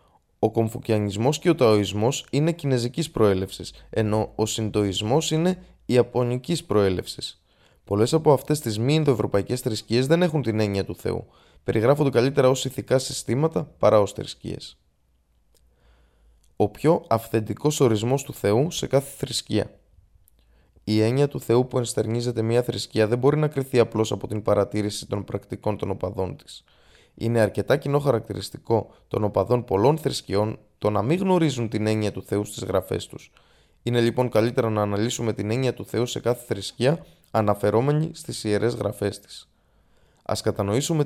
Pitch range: 105-135 Hz